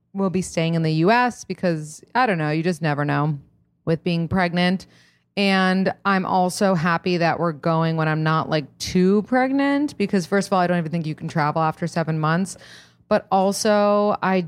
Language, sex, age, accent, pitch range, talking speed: English, female, 30-49, American, 160-215 Hz, 200 wpm